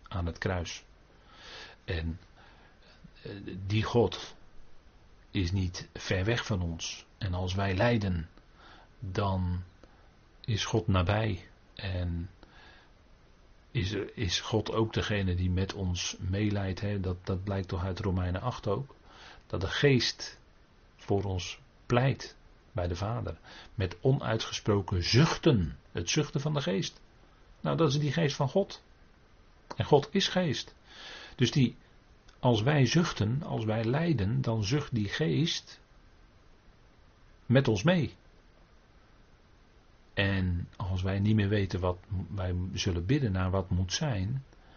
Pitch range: 95-120 Hz